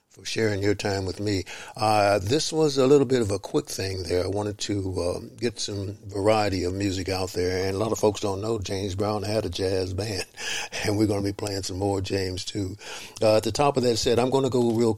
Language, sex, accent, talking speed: English, male, American, 250 wpm